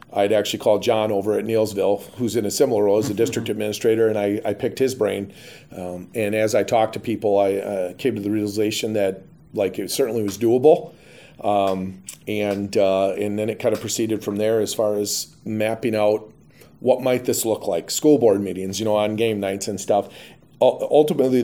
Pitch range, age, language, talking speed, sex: 100-115 Hz, 40-59, English, 205 wpm, male